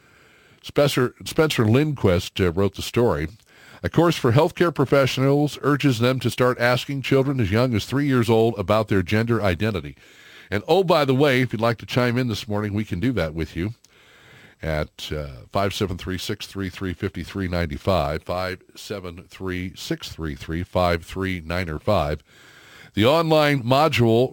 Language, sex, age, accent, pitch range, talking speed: English, male, 50-69, American, 95-125 Hz, 135 wpm